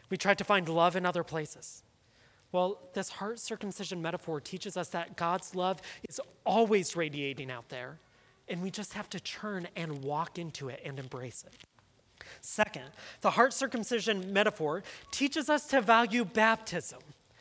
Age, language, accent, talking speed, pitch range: 30-49, English, American, 160 wpm, 170-230 Hz